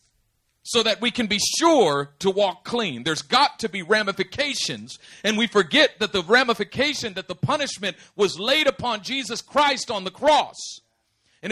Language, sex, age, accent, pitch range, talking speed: English, male, 40-59, American, 180-270 Hz, 165 wpm